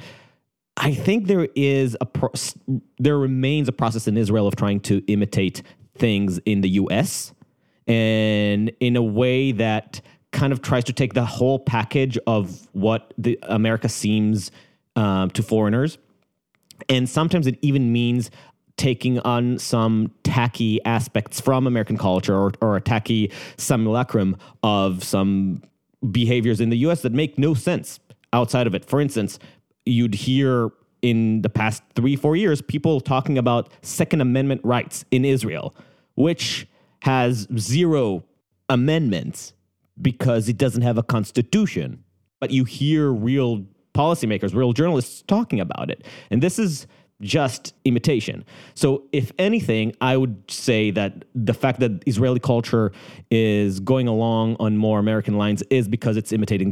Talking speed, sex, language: 145 wpm, male, English